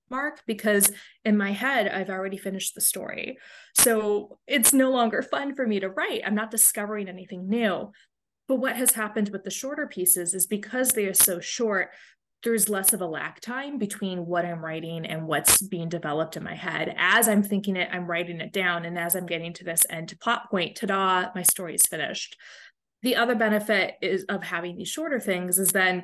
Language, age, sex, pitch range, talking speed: English, 20-39, female, 180-225 Hz, 205 wpm